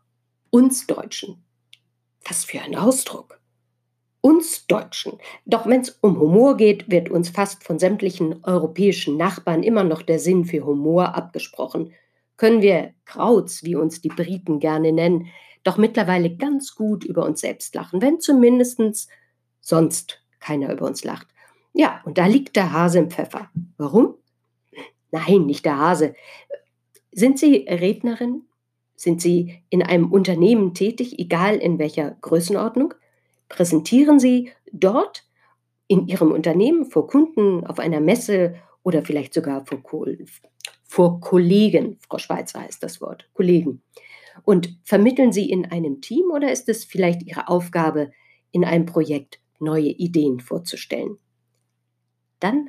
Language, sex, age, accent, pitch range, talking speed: German, female, 50-69, German, 155-210 Hz, 135 wpm